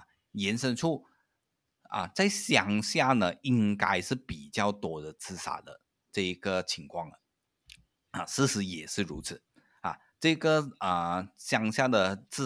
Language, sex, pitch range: Chinese, male, 95-130 Hz